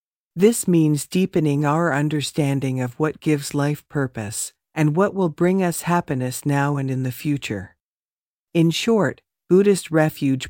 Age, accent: 50-69, American